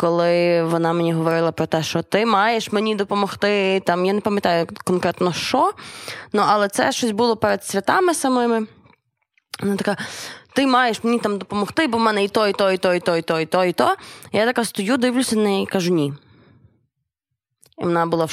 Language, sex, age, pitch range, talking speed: Ukrainian, female, 20-39, 165-220 Hz, 205 wpm